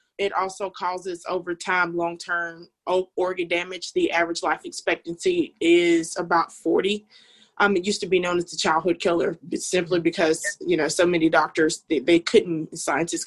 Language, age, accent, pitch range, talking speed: English, 20-39, American, 170-210 Hz, 165 wpm